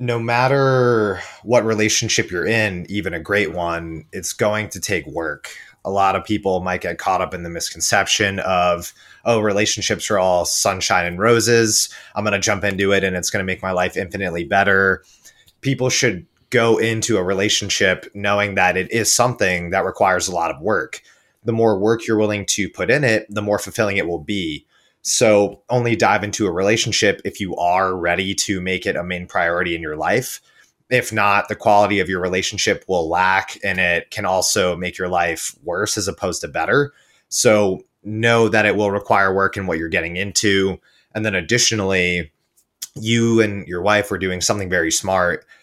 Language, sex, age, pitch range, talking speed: English, male, 30-49, 90-110 Hz, 190 wpm